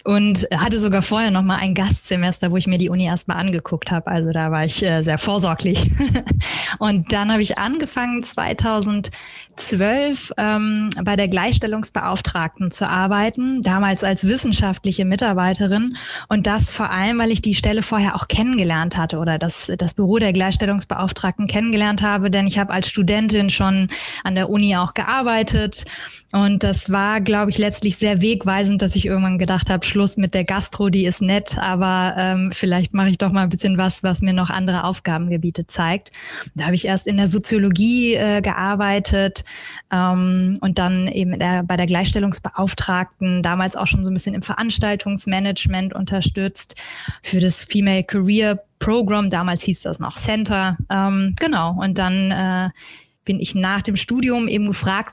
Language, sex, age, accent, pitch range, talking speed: German, female, 20-39, German, 185-210 Hz, 165 wpm